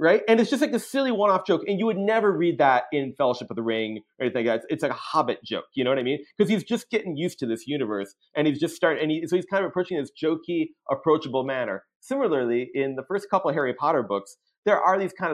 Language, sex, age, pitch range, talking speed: English, male, 30-49, 135-185 Hz, 280 wpm